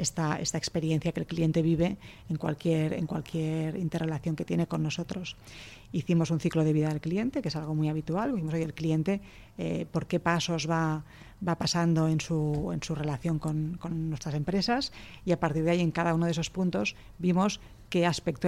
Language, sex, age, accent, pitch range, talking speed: Spanish, female, 30-49, Spanish, 160-180 Hz, 200 wpm